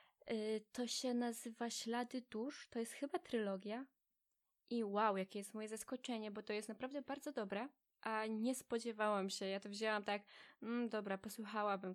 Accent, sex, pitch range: native, female, 200-235 Hz